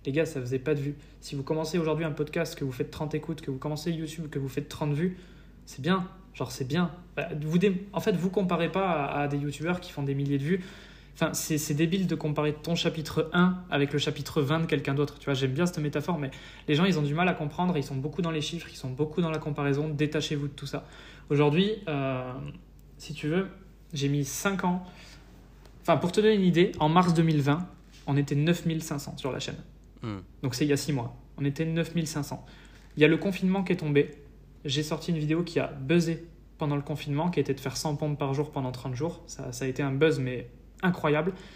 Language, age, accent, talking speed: French, 20-39, French, 240 wpm